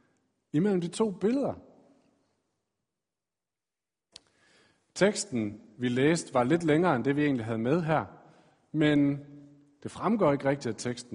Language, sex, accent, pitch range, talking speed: Danish, male, native, 125-165 Hz, 130 wpm